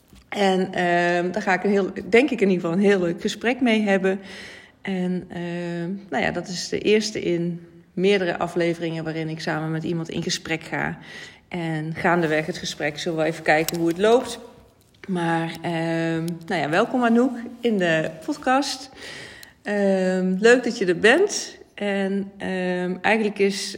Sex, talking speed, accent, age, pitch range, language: female, 170 wpm, Dutch, 40-59, 165-195 Hz, Dutch